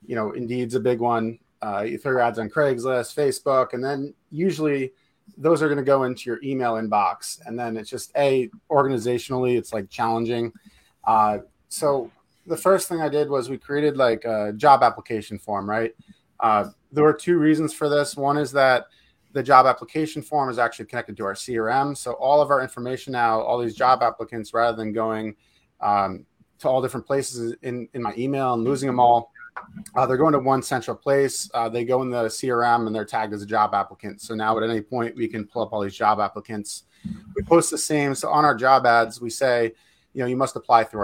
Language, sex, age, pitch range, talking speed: English, male, 30-49, 115-145 Hz, 210 wpm